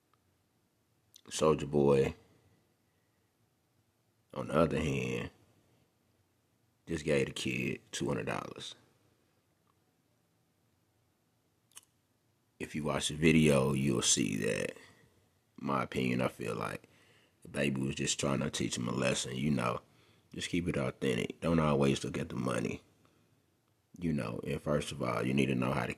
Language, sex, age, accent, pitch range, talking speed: English, male, 30-49, American, 70-95 Hz, 140 wpm